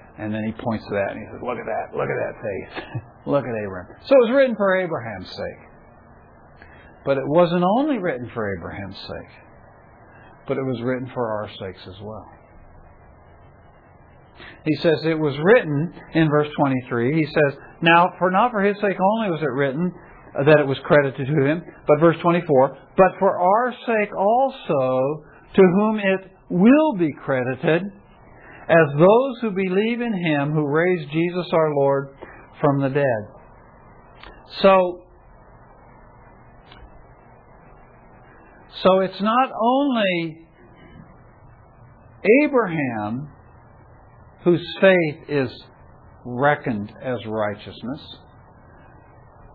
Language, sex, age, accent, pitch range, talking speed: English, male, 60-79, American, 125-185 Hz, 135 wpm